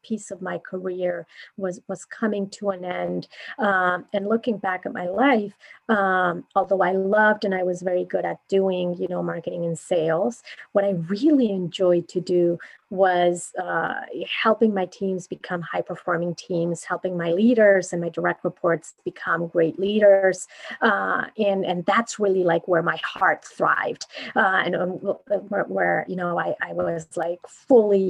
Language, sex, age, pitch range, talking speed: English, female, 30-49, 175-195 Hz, 170 wpm